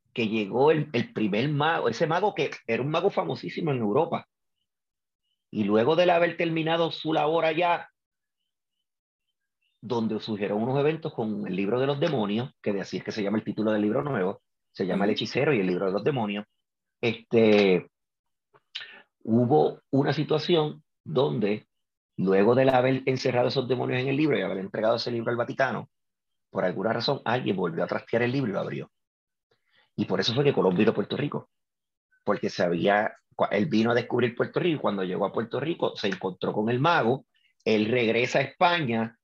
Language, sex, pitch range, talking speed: Spanish, male, 110-145 Hz, 185 wpm